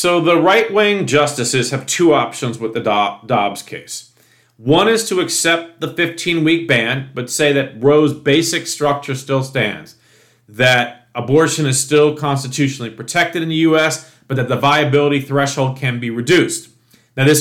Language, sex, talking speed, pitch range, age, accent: English, male, 155 wpm, 130-160 Hz, 40-59, American